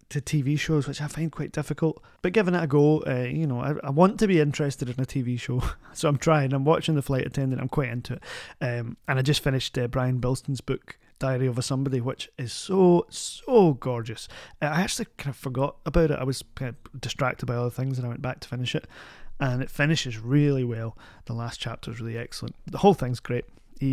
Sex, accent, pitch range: male, British, 120-145 Hz